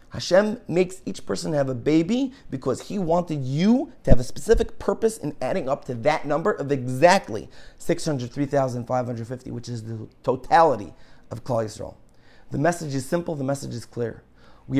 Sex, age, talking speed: male, 30-49, 160 wpm